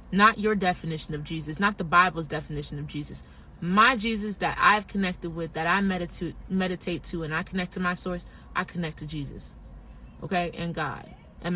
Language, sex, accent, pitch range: English, female, American, 160-195 Hz